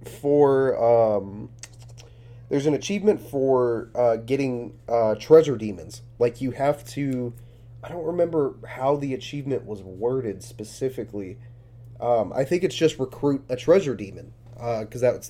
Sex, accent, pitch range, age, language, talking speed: male, American, 115-140 Hz, 30-49, English, 140 wpm